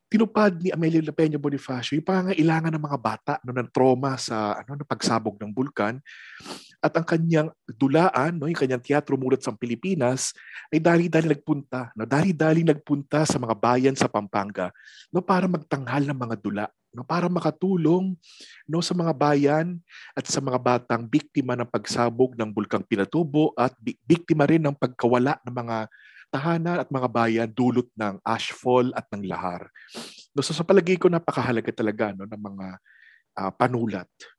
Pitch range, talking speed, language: 115-155 Hz, 165 wpm, Filipino